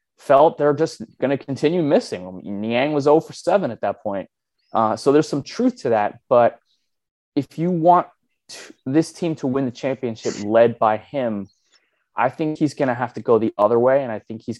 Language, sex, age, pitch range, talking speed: English, male, 20-39, 105-135 Hz, 205 wpm